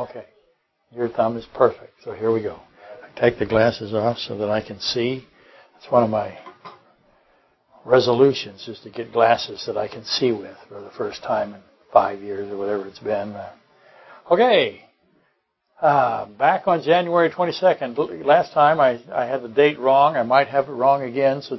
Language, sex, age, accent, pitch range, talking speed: English, male, 60-79, American, 115-140 Hz, 185 wpm